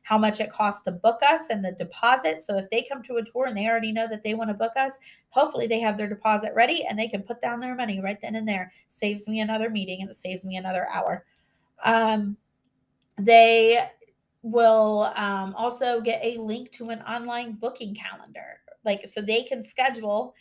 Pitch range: 200-235 Hz